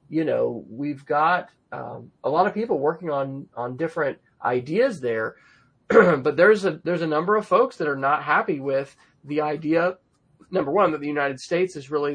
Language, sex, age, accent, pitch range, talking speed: English, male, 30-49, American, 135-170 Hz, 190 wpm